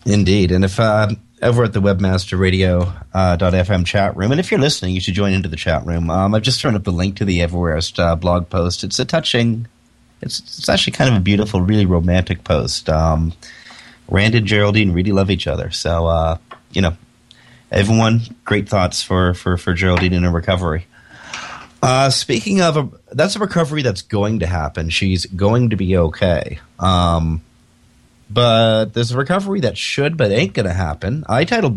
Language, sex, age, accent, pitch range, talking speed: English, male, 30-49, American, 90-120 Hz, 195 wpm